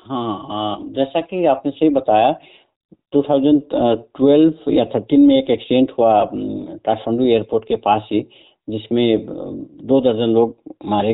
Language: Hindi